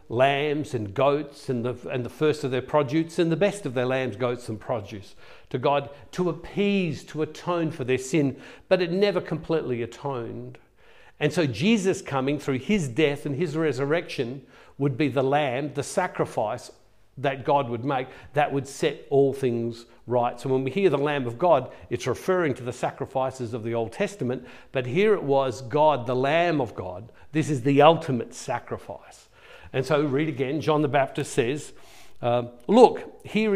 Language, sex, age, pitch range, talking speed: English, male, 50-69, 125-170 Hz, 180 wpm